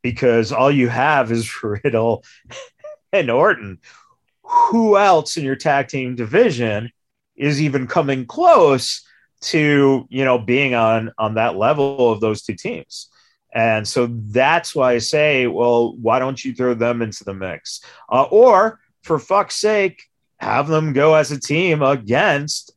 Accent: American